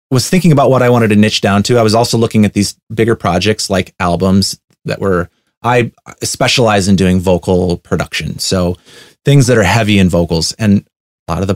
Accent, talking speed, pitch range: American, 210 wpm, 95-125 Hz